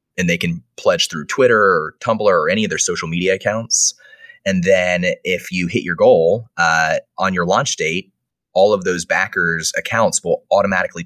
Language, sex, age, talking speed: English, male, 20-39, 185 wpm